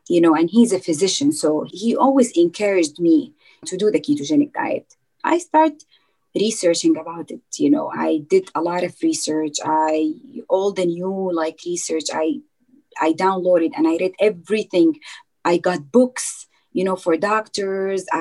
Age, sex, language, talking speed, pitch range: 30-49, female, English, 160 wpm, 175-280 Hz